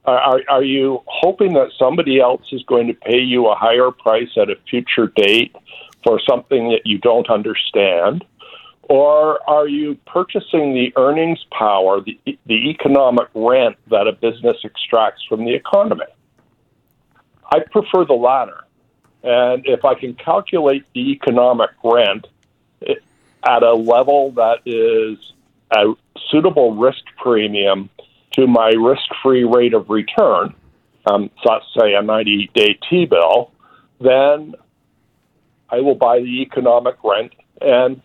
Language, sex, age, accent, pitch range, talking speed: English, male, 50-69, American, 120-160 Hz, 135 wpm